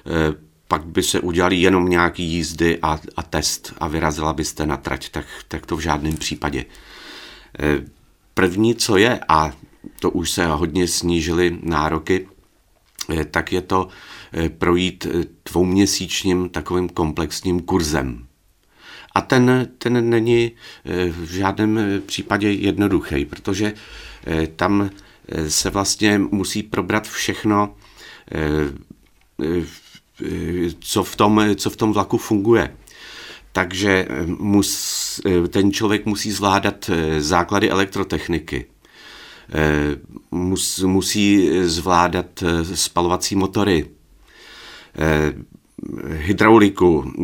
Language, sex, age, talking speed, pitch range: Czech, male, 40-59, 100 wpm, 80-100 Hz